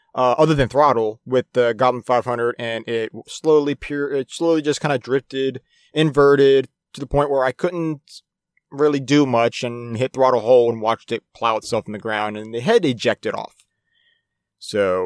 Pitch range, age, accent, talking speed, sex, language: 115-150 Hz, 30-49, American, 185 wpm, male, English